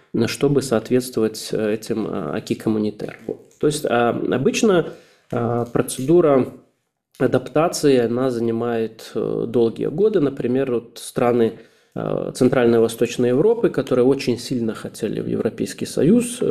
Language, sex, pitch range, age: Russian, male, 115-150 Hz, 20-39